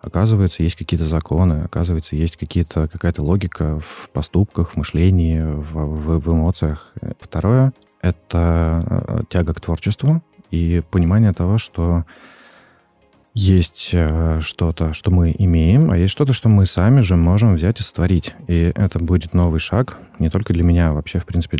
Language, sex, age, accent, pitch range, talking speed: Russian, male, 20-39, native, 85-100 Hz, 150 wpm